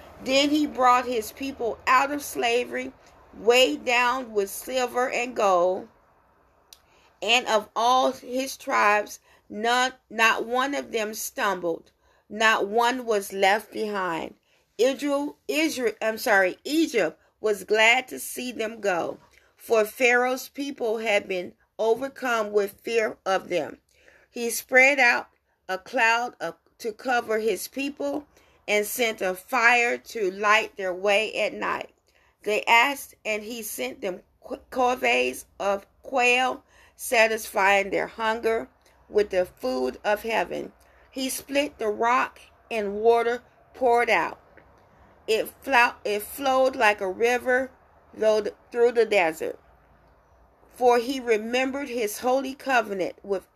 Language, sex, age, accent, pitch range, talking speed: English, female, 40-59, American, 210-255 Hz, 125 wpm